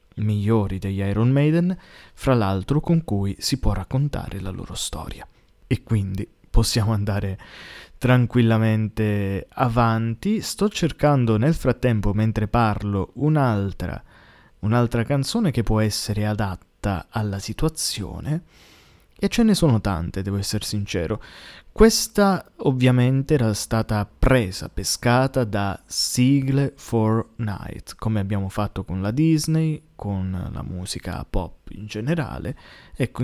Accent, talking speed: native, 120 wpm